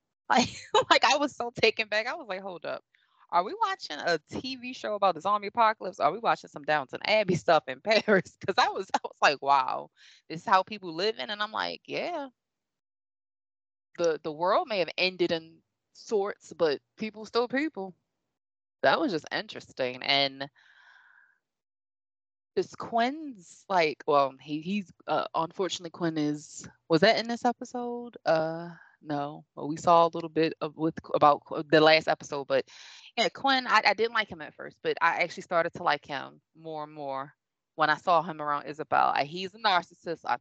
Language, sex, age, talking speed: English, female, 20-39, 185 wpm